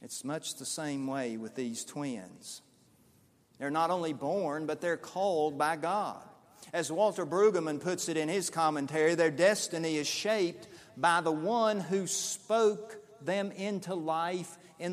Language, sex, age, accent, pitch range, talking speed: English, male, 50-69, American, 150-205 Hz, 155 wpm